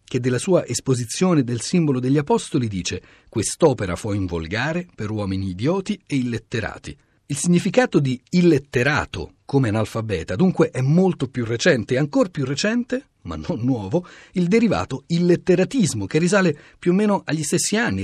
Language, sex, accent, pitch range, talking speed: Italian, male, native, 120-180 Hz, 155 wpm